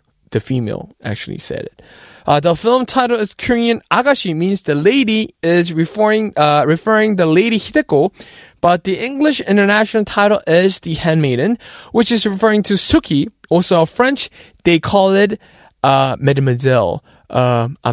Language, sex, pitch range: Korean, male, 155-220 Hz